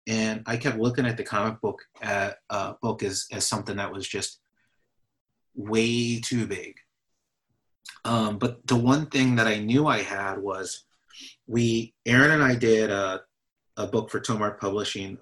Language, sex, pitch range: English, male, 100-120 Hz